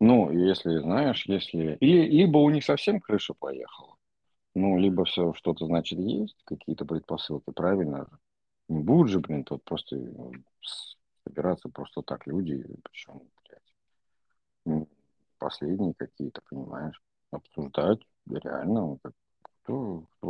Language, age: Russian, 50-69